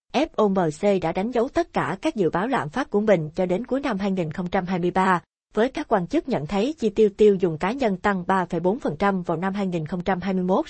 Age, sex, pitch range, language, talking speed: 20-39, female, 180-225 Hz, Vietnamese, 195 wpm